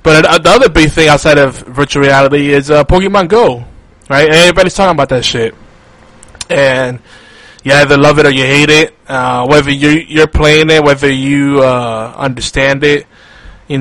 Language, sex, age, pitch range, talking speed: English, male, 20-39, 125-150 Hz, 180 wpm